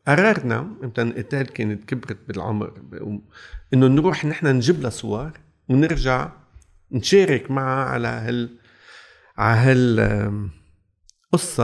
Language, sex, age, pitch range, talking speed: Arabic, male, 50-69, 110-150 Hz, 105 wpm